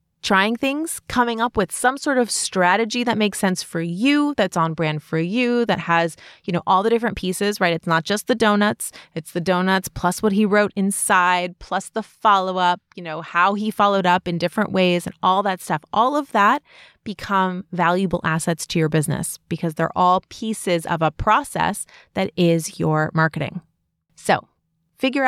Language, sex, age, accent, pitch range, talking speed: English, female, 30-49, American, 175-215 Hz, 190 wpm